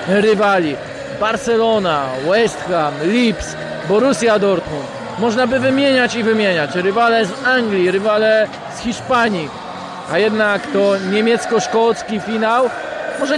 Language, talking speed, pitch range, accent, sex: Polish, 110 wpm, 180-225 Hz, native, male